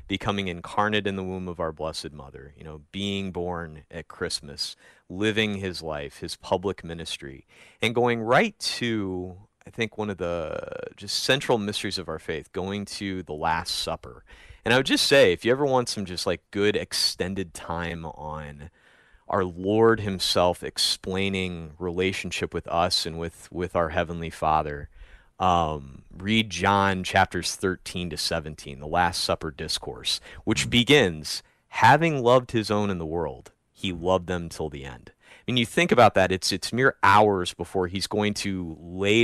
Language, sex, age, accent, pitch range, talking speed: English, male, 30-49, American, 85-105 Hz, 170 wpm